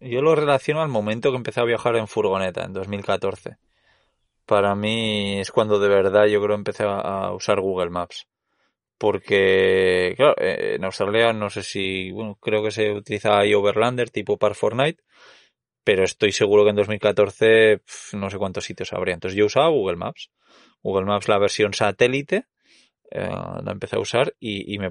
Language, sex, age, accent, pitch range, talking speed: Spanish, male, 20-39, Spanish, 100-125 Hz, 175 wpm